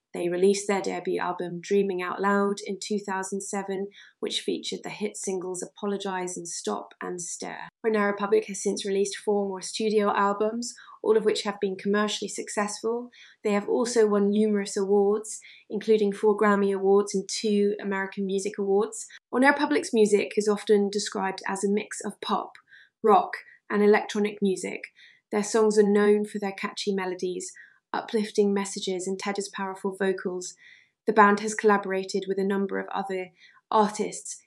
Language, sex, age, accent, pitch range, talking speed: English, female, 20-39, British, 195-215 Hz, 155 wpm